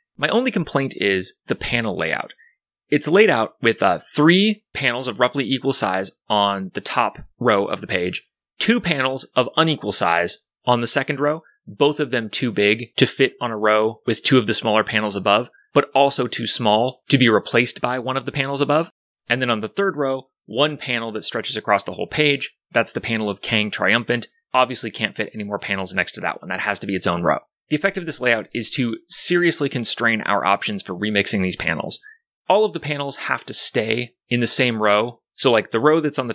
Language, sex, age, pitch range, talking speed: English, male, 30-49, 110-145 Hz, 220 wpm